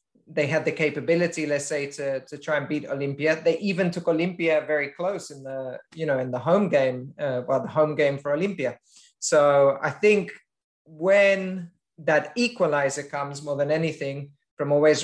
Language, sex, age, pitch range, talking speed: English, male, 30-49, 140-170 Hz, 180 wpm